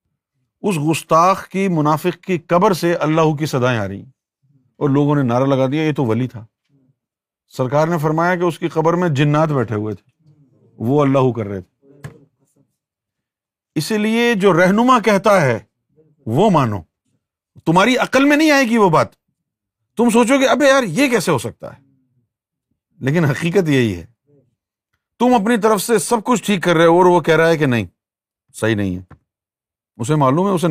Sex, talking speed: male, 180 wpm